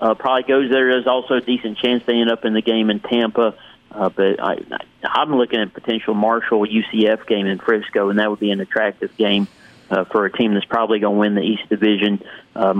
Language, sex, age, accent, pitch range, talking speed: English, male, 40-59, American, 105-125 Hz, 230 wpm